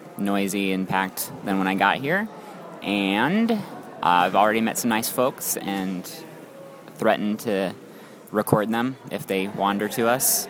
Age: 20-39